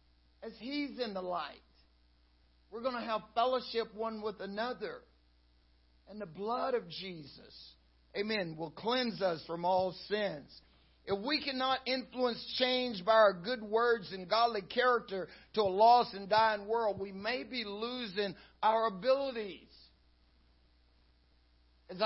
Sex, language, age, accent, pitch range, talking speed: male, English, 60-79, American, 180-245 Hz, 135 wpm